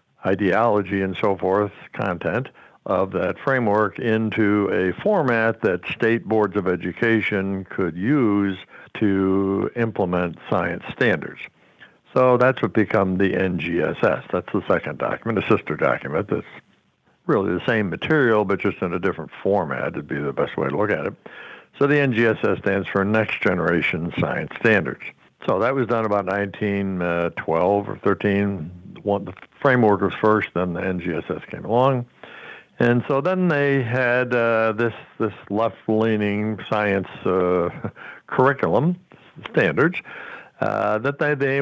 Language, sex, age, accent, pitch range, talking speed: English, male, 60-79, American, 100-120 Hz, 145 wpm